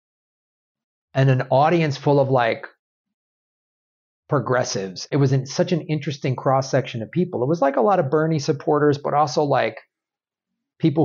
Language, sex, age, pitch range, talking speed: English, male, 40-59, 125-155 Hz, 160 wpm